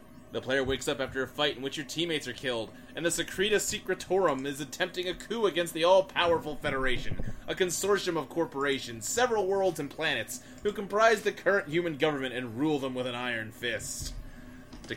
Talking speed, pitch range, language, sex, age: 190 wpm, 125-175 Hz, English, male, 20-39